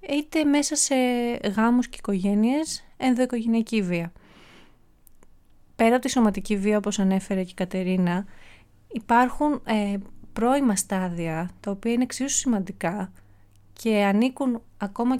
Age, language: 30-49, Greek